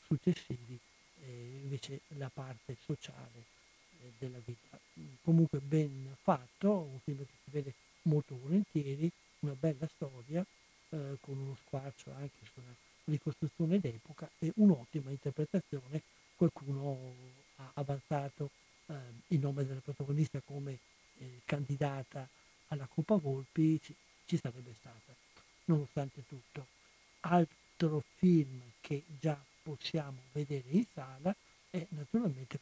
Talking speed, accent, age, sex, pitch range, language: 115 wpm, native, 60-79, male, 130-160 Hz, Italian